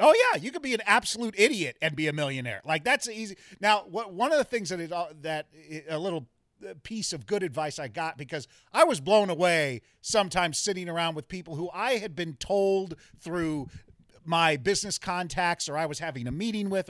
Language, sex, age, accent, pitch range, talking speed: English, male, 40-59, American, 155-215 Hz, 200 wpm